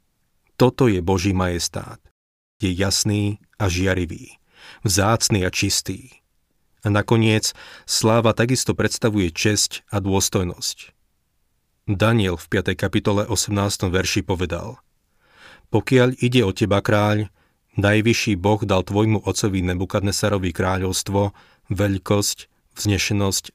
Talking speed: 100 wpm